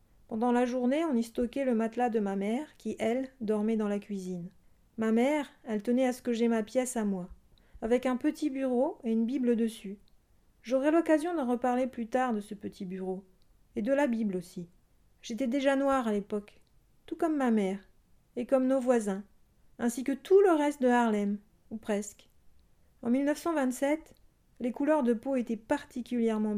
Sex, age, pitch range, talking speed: female, 40-59, 215-265 Hz, 185 wpm